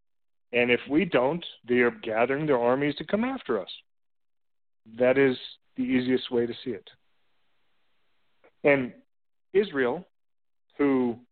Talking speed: 125 wpm